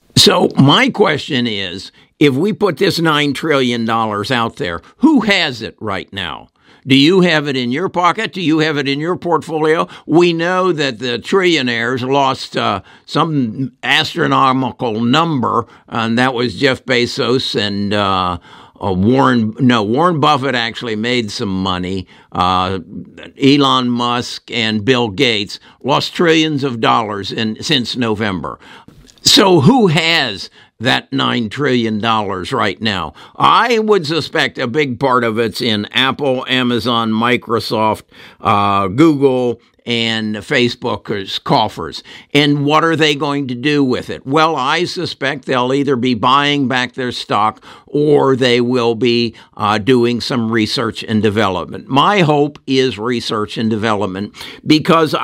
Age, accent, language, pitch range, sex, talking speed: 60-79, American, English, 115-150 Hz, male, 140 wpm